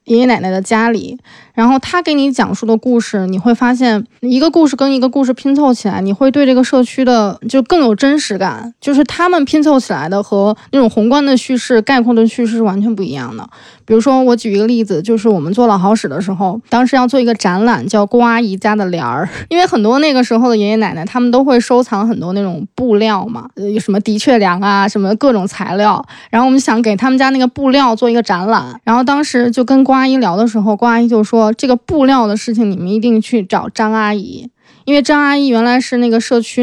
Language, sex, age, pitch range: Chinese, female, 20-39, 210-255 Hz